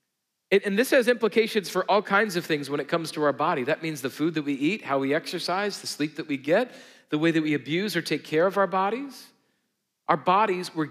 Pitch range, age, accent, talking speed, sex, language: 145-195 Hz, 40-59, American, 240 wpm, male, English